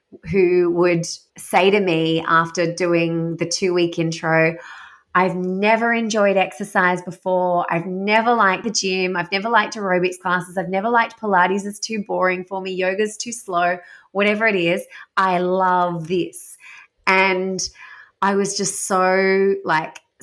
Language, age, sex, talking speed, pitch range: English, 20-39, female, 150 wpm, 170-200 Hz